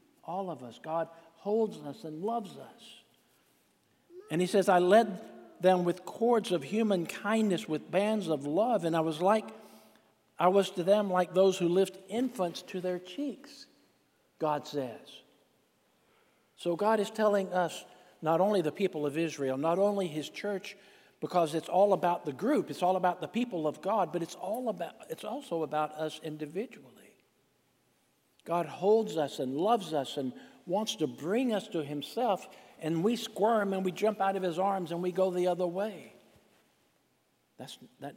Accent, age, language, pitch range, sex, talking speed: American, 60-79, English, 150-200 Hz, male, 170 wpm